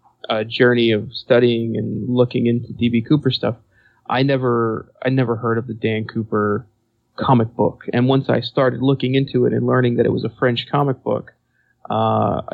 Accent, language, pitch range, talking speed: American, English, 115-135 Hz, 180 wpm